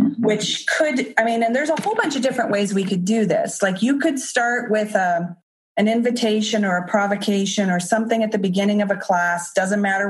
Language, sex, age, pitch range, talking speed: English, female, 30-49, 185-225 Hz, 215 wpm